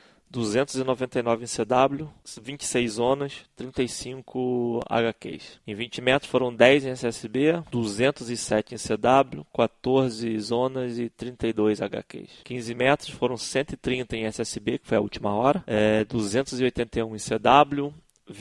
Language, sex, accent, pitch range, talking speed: Portuguese, male, Brazilian, 115-130 Hz, 120 wpm